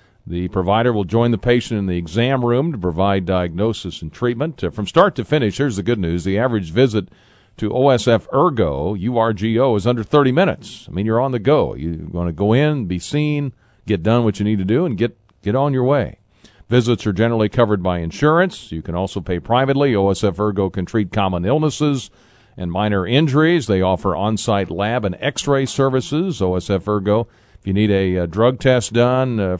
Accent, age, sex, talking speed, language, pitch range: American, 50-69, male, 200 wpm, English, 95-125 Hz